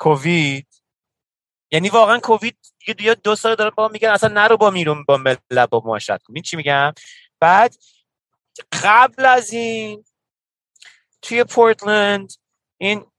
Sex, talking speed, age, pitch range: male, 135 wpm, 30-49, 165-210 Hz